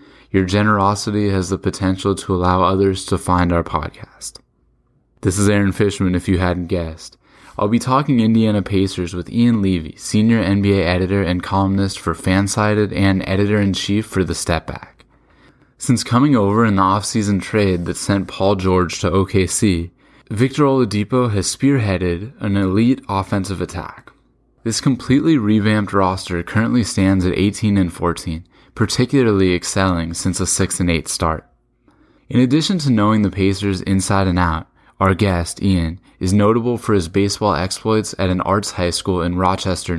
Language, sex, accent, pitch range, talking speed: English, male, American, 90-105 Hz, 155 wpm